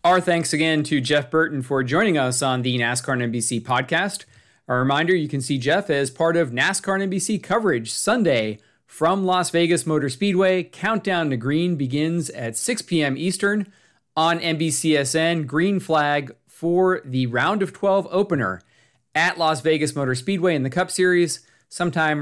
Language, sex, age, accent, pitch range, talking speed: English, male, 40-59, American, 130-175 Hz, 165 wpm